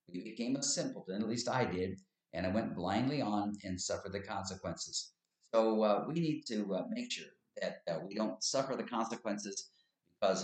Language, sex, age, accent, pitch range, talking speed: English, male, 50-69, American, 95-115 Hz, 190 wpm